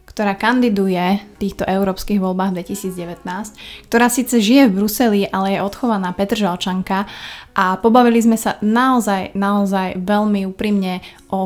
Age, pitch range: 20-39, 190-215 Hz